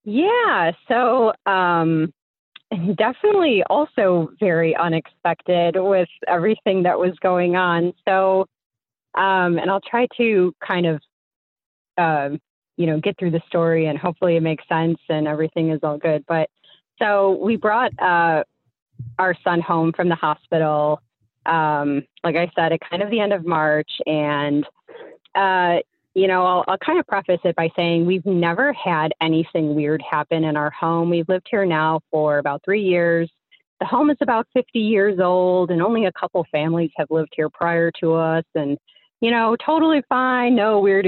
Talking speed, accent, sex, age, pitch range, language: 165 wpm, American, female, 30-49, 160-195 Hz, English